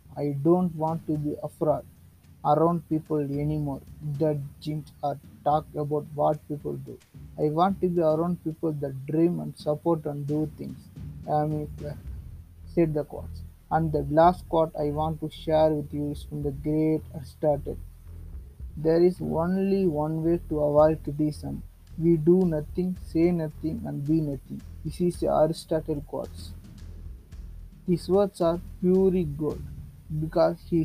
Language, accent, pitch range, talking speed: English, Indian, 140-165 Hz, 150 wpm